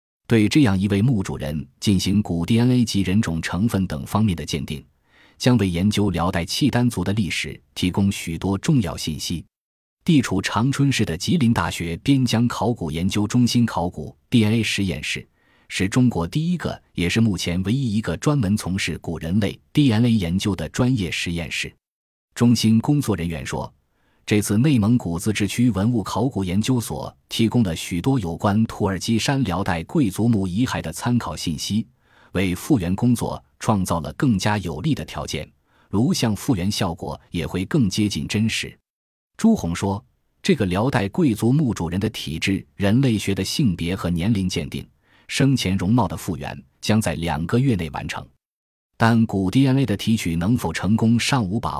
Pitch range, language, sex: 85-120 Hz, Chinese, male